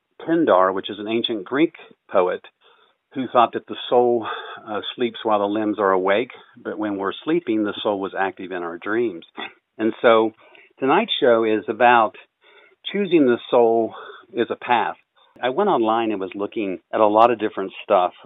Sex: male